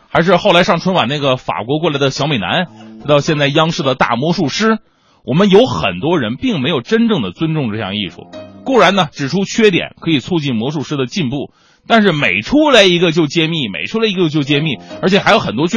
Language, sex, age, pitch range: Chinese, male, 30-49, 150-225 Hz